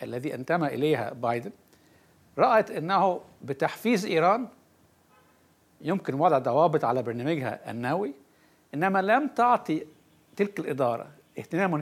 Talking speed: 100 wpm